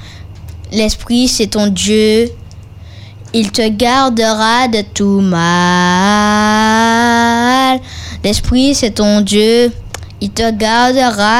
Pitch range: 200-265 Hz